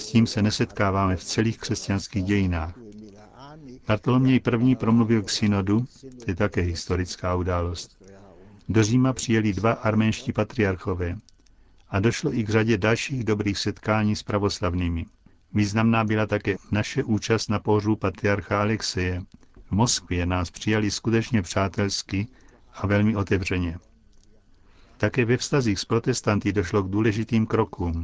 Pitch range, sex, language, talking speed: 100-115 Hz, male, Czech, 130 wpm